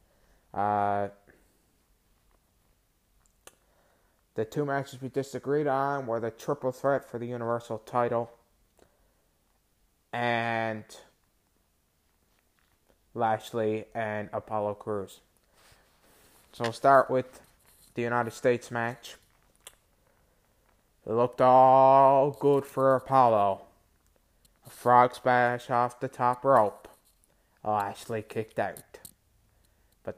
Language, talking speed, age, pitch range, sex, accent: English, 90 wpm, 20-39, 85-125 Hz, male, American